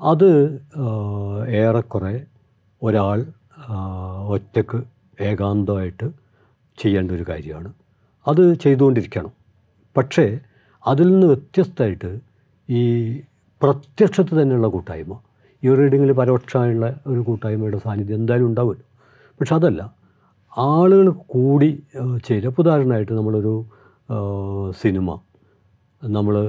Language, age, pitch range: Malayalam, 60-79, 100-130 Hz